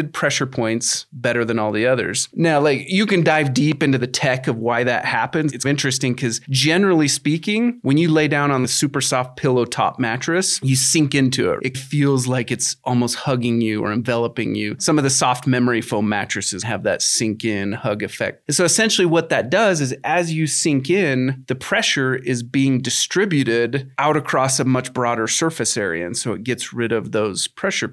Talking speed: 200 wpm